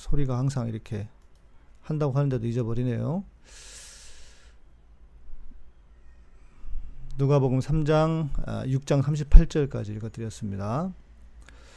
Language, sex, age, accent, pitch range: Korean, male, 40-59, native, 105-155 Hz